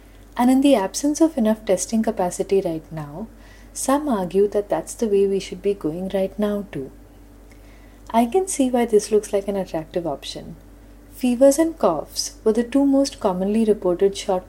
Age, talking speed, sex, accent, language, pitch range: 30-49, 180 wpm, female, Indian, English, 180-230 Hz